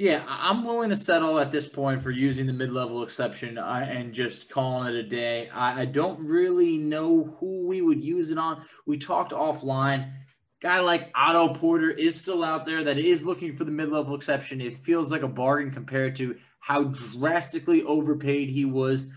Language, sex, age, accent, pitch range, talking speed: English, male, 20-39, American, 135-185 Hz, 190 wpm